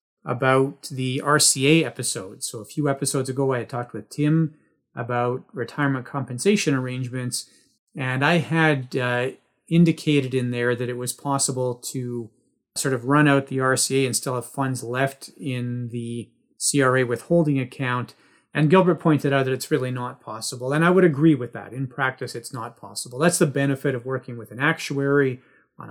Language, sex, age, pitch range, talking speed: English, male, 30-49, 125-150 Hz, 175 wpm